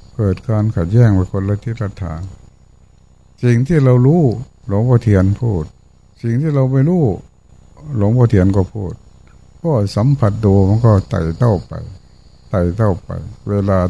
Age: 60-79